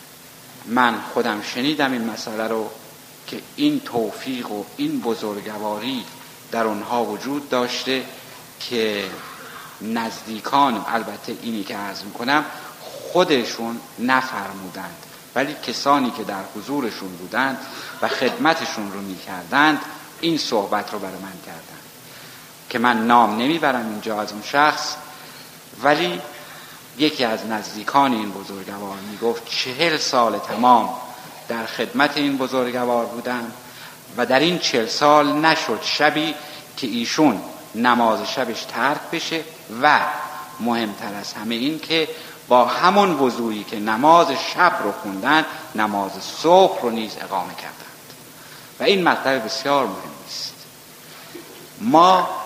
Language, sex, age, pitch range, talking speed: Persian, male, 50-69, 110-150 Hz, 120 wpm